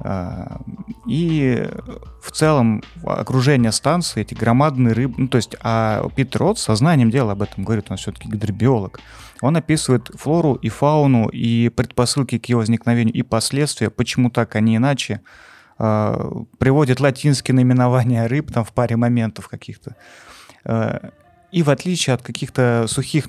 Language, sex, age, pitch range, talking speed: Russian, male, 30-49, 115-135 Hz, 135 wpm